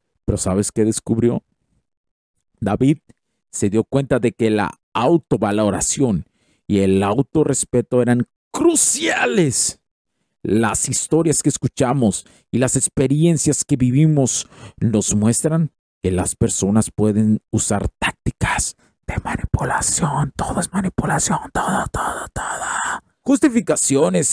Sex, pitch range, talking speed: male, 105-145 Hz, 105 wpm